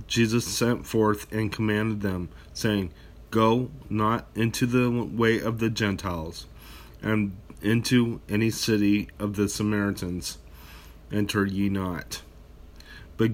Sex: male